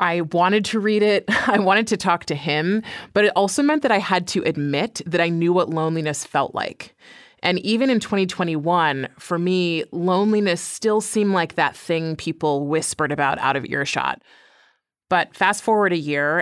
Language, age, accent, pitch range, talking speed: English, 30-49, American, 155-185 Hz, 185 wpm